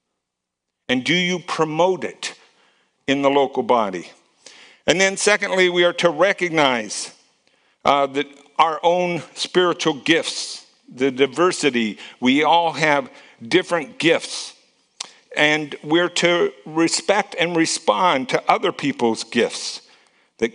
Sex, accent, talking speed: male, American, 115 wpm